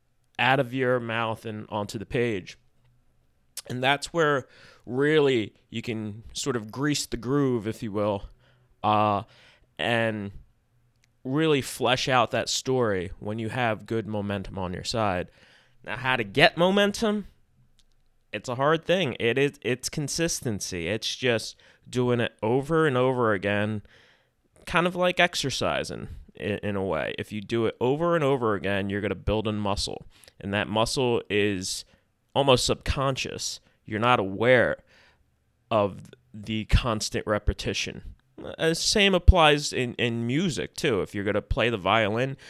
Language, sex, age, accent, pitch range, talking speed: English, male, 20-39, American, 100-130 Hz, 145 wpm